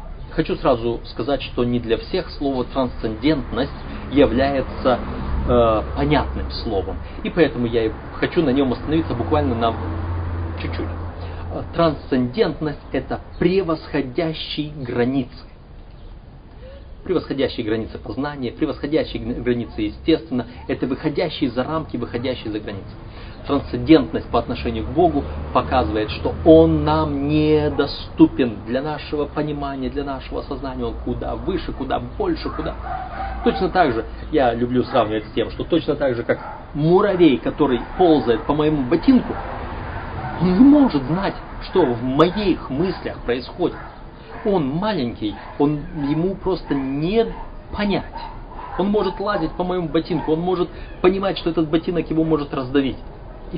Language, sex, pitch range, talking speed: Russian, male, 115-165 Hz, 125 wpm